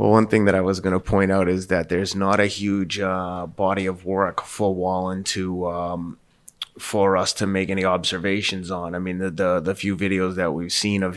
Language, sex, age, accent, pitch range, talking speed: English, male, 20-39, American, 90-100 Hz, 225 wpm